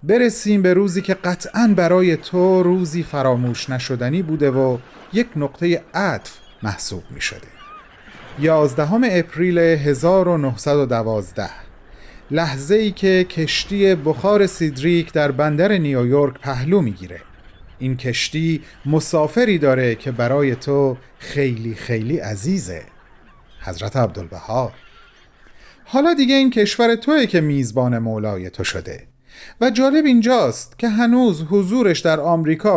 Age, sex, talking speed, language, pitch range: 40-59, male, 115 wpm, Persian, 140-200 Hz